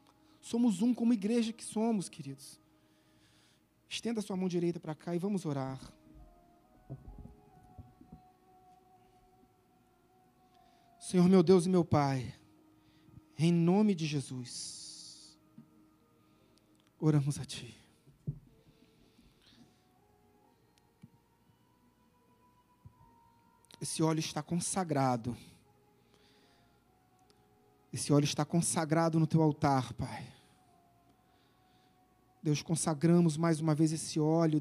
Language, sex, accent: Portuguese, male, Brazilian